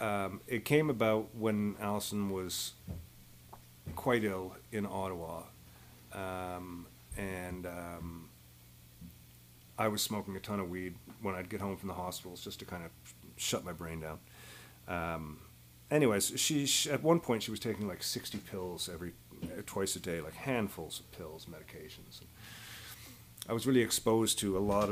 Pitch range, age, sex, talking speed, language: 85-105 Hz, 40-59, male, 155 wpm, English